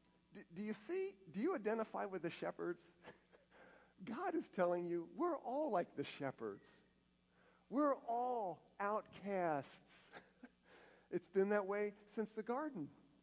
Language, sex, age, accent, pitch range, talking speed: English, male, 50-69, American, 150-210 Hz, 125 wpm